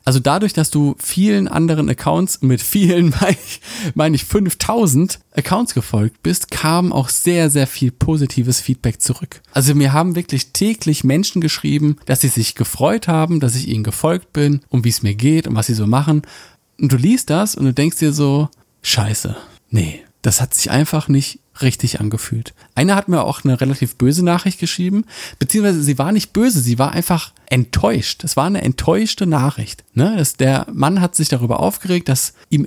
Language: German